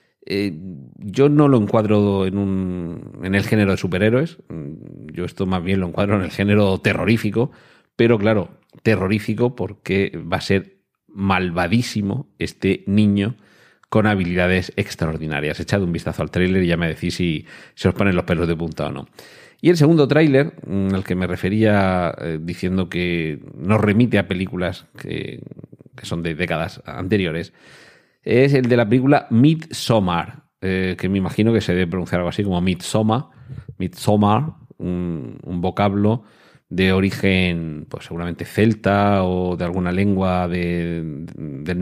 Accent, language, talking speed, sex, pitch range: Spanish, Spanish, 155 wpm, male, 90-110 Hz